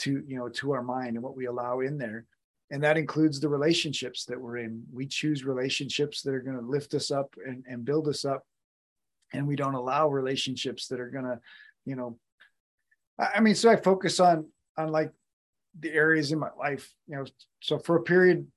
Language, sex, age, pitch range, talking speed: English, male, 30-49, 130-155 Hz, 210 wpm